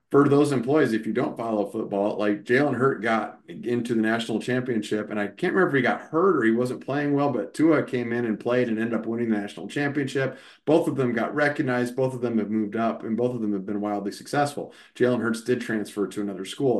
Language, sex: English, male